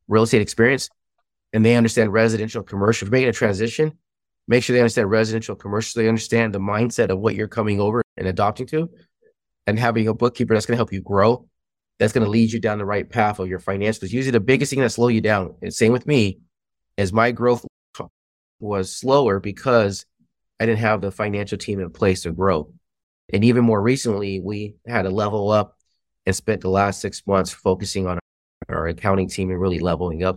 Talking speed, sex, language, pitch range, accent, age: 210 wpm, male, English, 95-115 Hz, American, 30-49